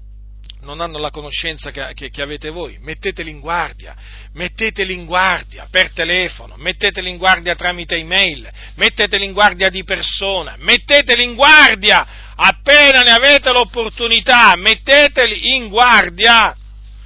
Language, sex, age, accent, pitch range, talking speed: Italian, male, 40-59, native, 125-185 Hz, 125 wpm